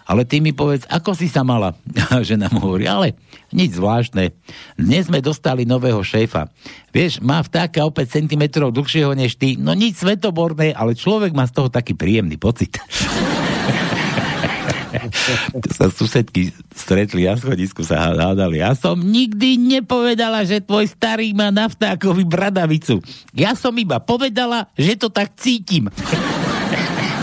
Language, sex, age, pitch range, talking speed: Slovak, male, 60-79, 105-150 Hz, 145 wpm